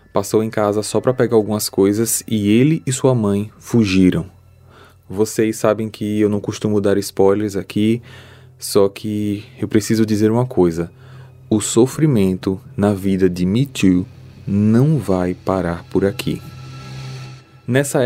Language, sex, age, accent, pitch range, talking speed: Portuguese, male, 20-39, Brazilian, 100-125 Hz, 145 wpm